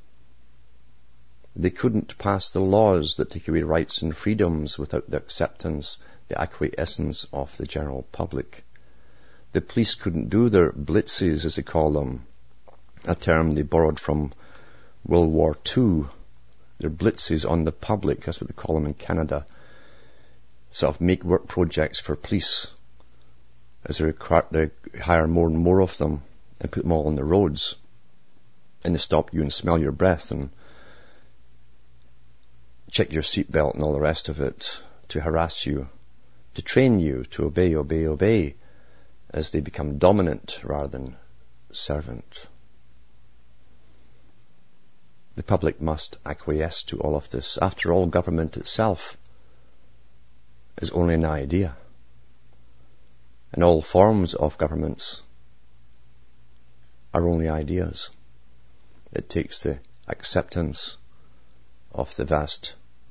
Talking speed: 130 wpm